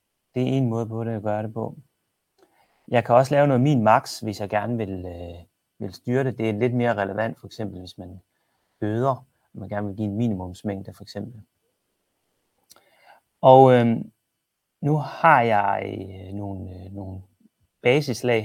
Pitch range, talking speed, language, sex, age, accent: 100-125 Hz, 170 wpm, Danish, male, 30-49, native